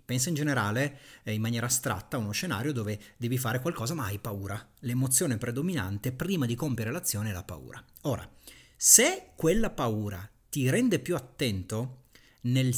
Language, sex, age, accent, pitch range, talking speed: Italian, male, 40-59, native, 115-145 Hz, 165 wpm